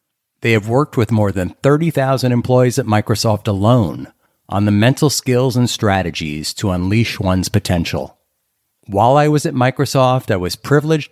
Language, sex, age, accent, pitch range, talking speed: English, male, 50-69, American, 100-130 Hz, 155 wpm